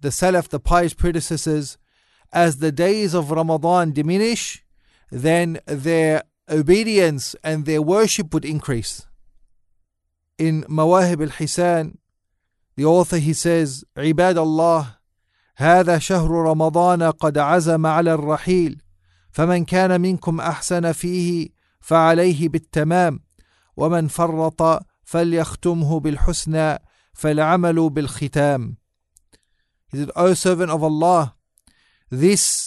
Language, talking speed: English, 100 wpm